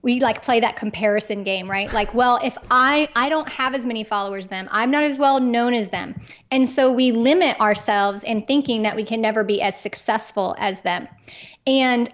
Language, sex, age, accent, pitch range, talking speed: English, female, 20-39, American, 215-270 Hz, 215 wpm